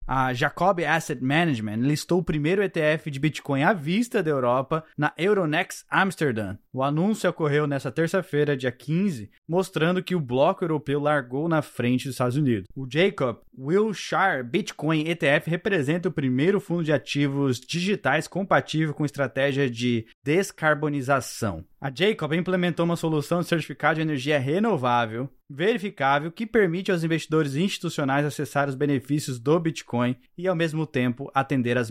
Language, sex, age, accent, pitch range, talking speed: Portuguese, male, 20-39, Brazilian, 130-165 Hz, 150 wpm